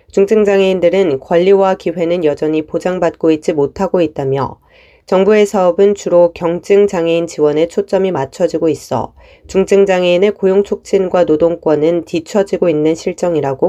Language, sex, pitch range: Korean, female, 165-205 Hz